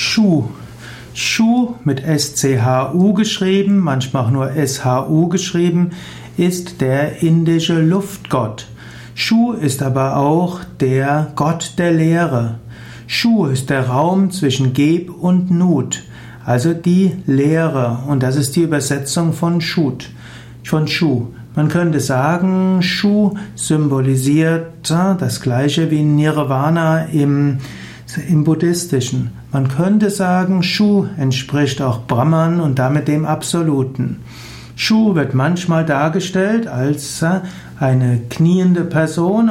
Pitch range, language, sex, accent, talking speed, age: 135-175 Hz, German, male, German, 110 wpm, 60-79